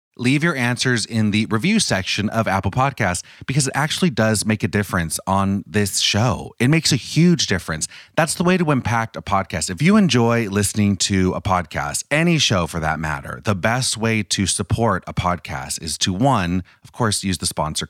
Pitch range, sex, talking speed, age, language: 95-130 Hz, male, 200 wpm, 30-49, English